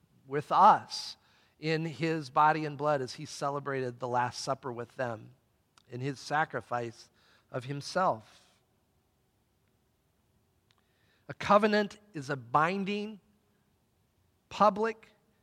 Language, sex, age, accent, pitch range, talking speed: English, male, 50-69, American, 140-185 Hz, 100 wpm